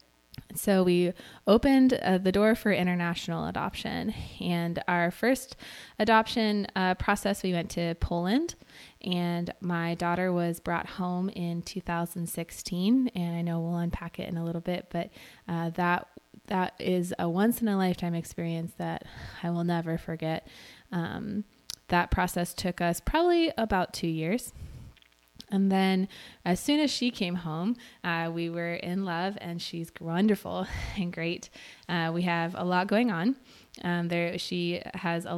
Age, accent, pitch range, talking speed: 20-39, American, 170-200 Hz, 150 wpm